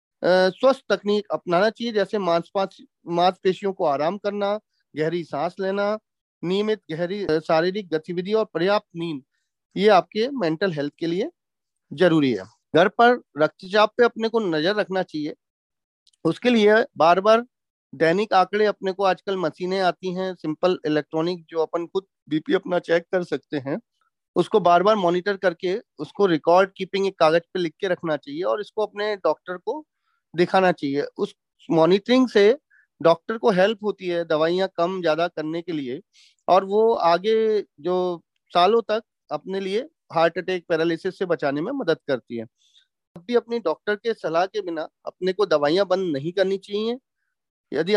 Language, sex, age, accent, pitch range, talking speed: English, male, 40-59, Indian, 170-215 Hz, 130 wpm